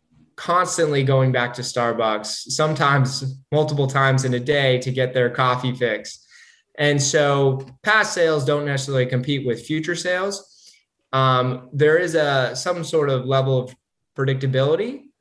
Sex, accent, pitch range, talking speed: male, American, 120-145 Hz, 140 wpm